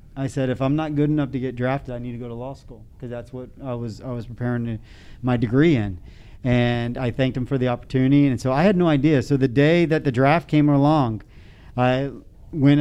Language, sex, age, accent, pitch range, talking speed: English, male, 40-59, American, 125-145 Hz, 240 wpm